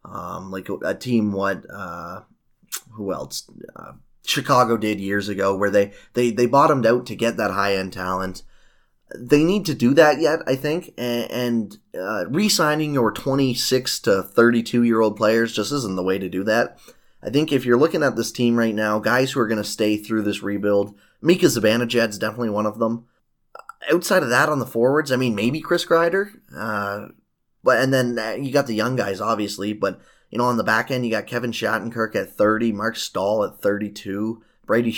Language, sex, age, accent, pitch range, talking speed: English, male, 20-39, American, 100-125 Hz, 200 wpm